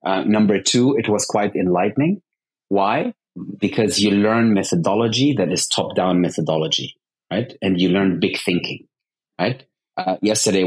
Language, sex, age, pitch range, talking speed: English, male, 30-49, 95-115 Hz, 140 wpm